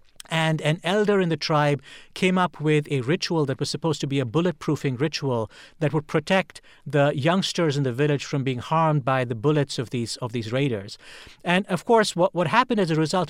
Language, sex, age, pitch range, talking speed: English, male, 50-69, 140-175 Hz, 210 wpm